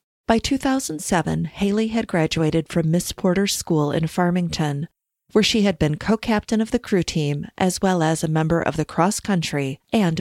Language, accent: English, American